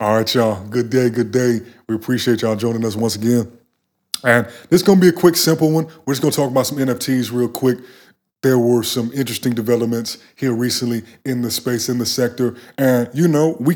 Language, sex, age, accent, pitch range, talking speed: English, male, 30-49, American, 110-135 Hz, 220 wpm